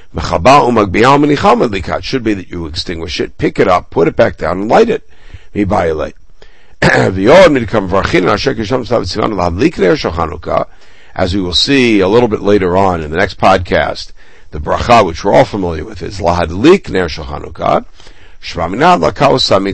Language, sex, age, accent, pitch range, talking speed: English, male, 60-79, American, 90-110 Hz, 135 wpm